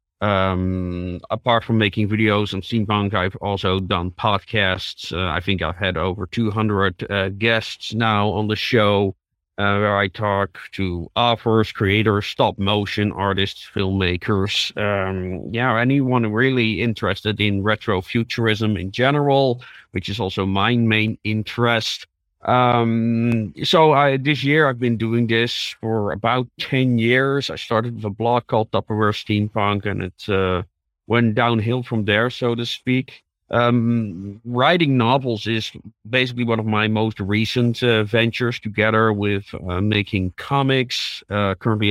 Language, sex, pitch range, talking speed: English, male, 100-120 Hz, 145 wpm